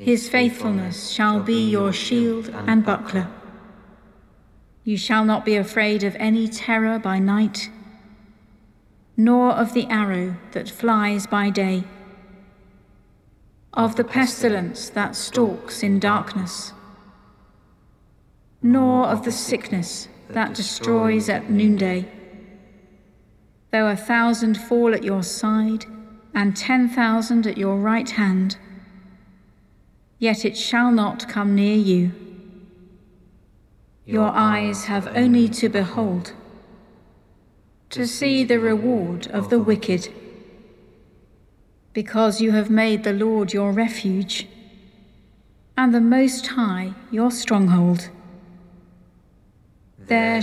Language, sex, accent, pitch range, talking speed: English, female, British, 195-230 Hz, 105 wpm